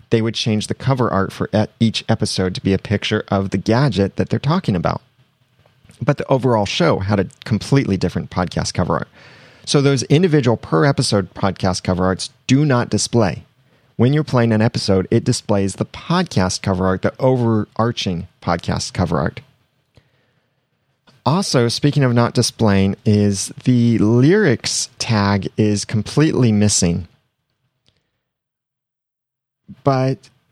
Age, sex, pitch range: 30-49, male, 100-130 Hz